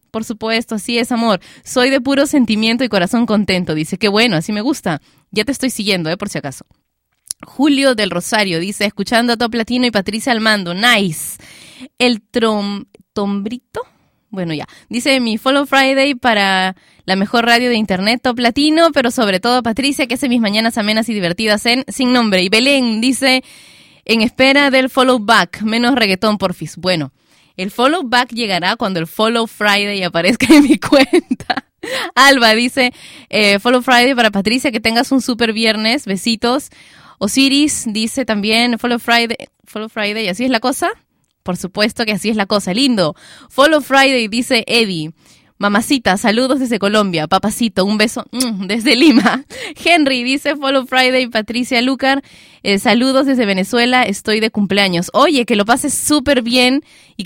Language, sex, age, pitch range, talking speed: Spanish, female, 20-39, 205-255 Hz, 165 wpm